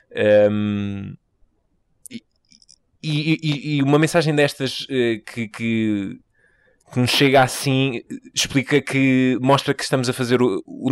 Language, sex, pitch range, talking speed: Portuguese, male, 105-130 Hz, 120 wpm